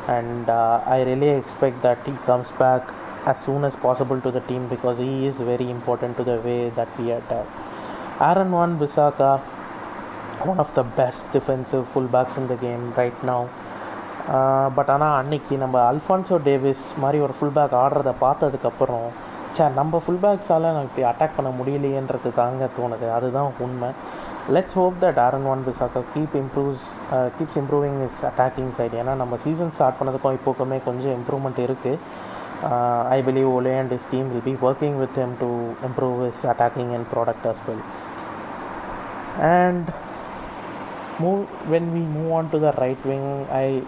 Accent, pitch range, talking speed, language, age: native, 125-145 Hz, 170 wpm, Tamil, 20-39